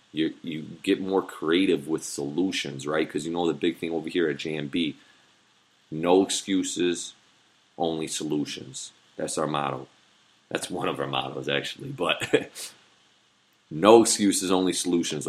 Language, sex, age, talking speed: English, male, 30-49, 140 wpm